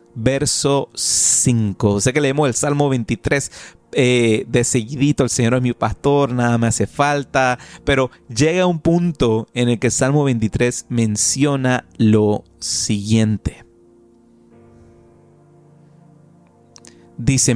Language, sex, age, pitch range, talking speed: Spanish, male, 30-49, 115-140 Hz, 115 wpm